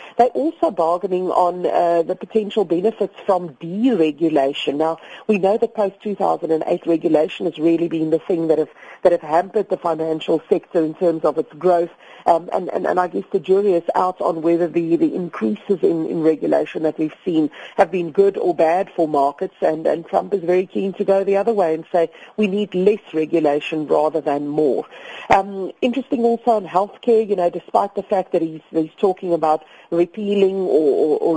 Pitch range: 160-205 Hz